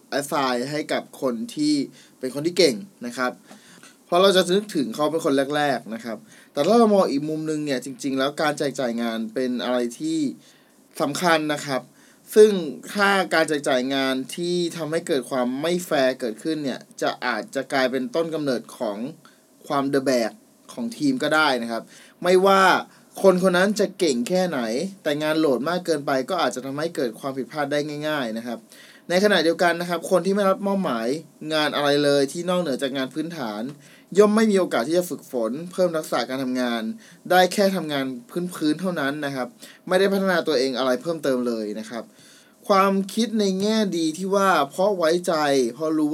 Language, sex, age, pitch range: Thai, male, 20-39, 135-185 Hz